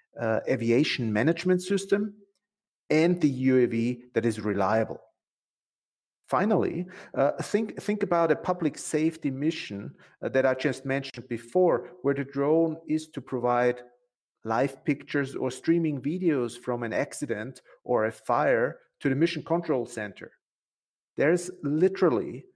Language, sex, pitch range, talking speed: English, male, 125-165 Hz, 135 wpm